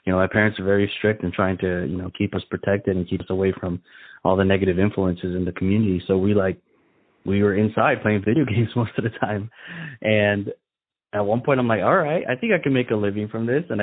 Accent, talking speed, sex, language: American, 250 wpm, male, English